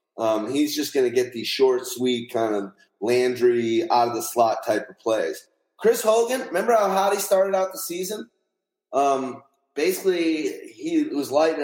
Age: 30-49